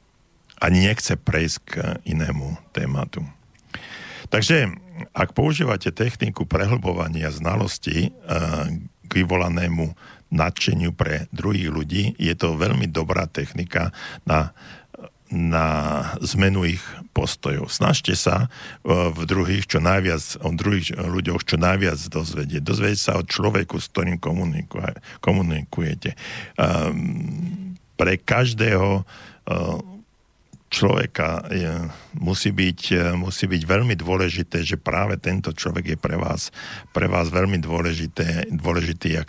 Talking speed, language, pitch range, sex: 105 wpm, Slovak, 80-100 Hz, male